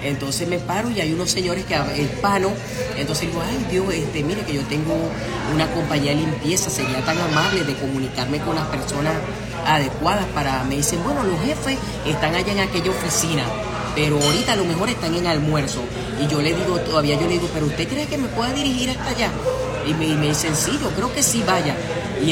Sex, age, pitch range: female, 10-29, 145-180 Hz